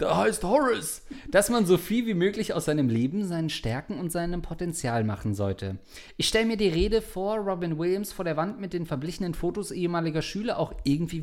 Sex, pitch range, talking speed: male, 125-180 Hz, 205 wpm